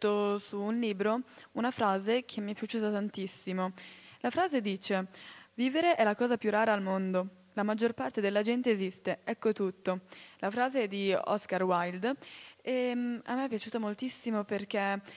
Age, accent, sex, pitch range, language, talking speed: 10-29, native, female, 195-240 Hz, Italian, 165 wpm